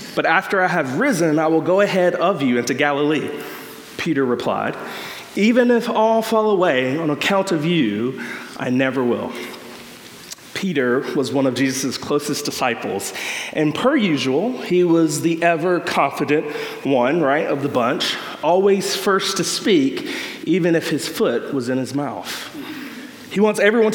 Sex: male